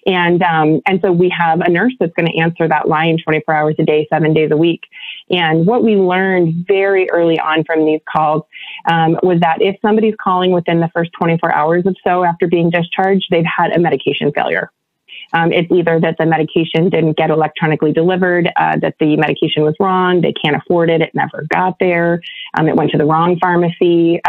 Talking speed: 210 wpm